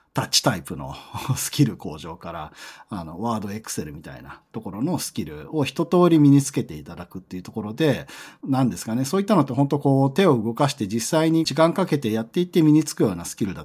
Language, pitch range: Japanese, 110-165 Hz